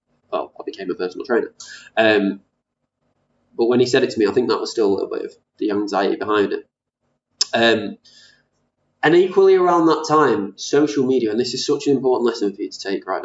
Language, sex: English, male